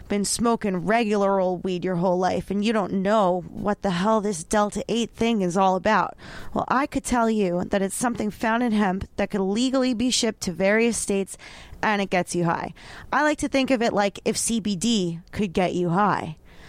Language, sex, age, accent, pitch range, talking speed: English, female, 20-39, American, 185-225 Hz, 210 wpm